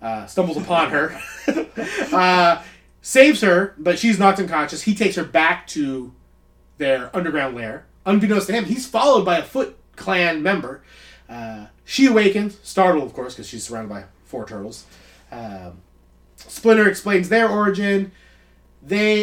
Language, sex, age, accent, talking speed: English, male, 30-49, American, 145 wpm